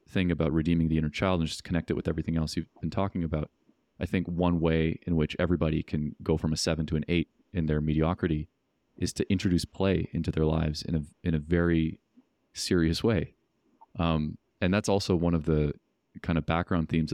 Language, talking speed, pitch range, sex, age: English, 210 wpm, 80-95 Hz, male, 30-49